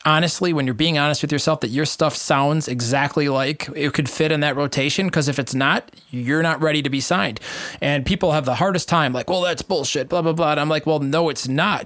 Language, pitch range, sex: English, 130-160 Hz, male